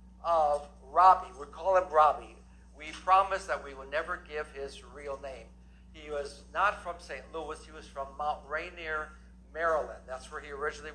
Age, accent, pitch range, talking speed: 60-79, American, 125-165 Hz, 175 wpm